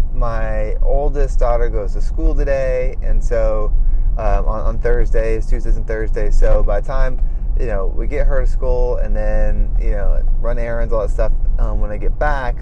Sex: male